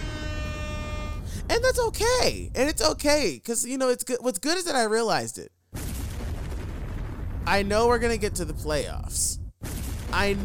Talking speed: 160 wpm